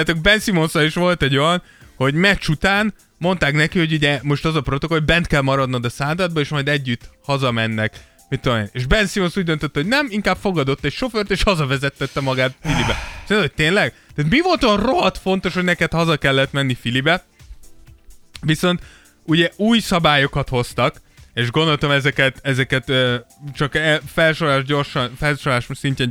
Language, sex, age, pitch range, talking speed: Hungarian, male, 20-39, 130-170 Hz, 165 wpm